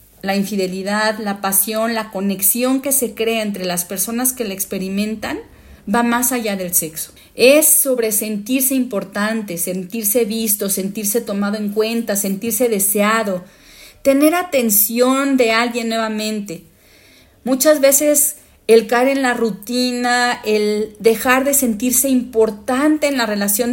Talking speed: 130 wpm